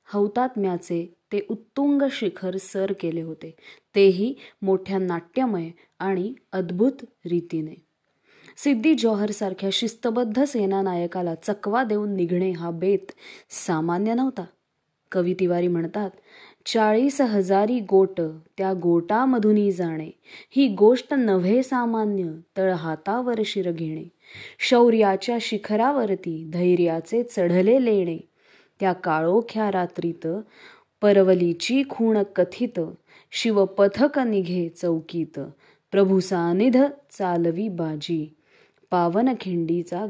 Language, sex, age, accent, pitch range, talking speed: English, female, 20-39, Indian, 175-230 Hz, 95 wpm